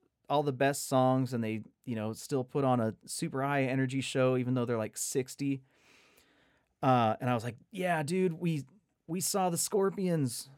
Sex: male